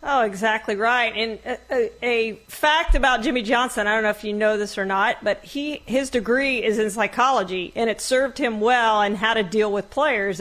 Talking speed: 220 wpm